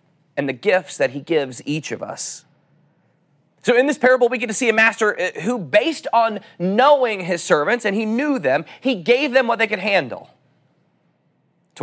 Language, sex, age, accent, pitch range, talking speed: English, male, 30-49, American, 150-205 Hz, 190 wpm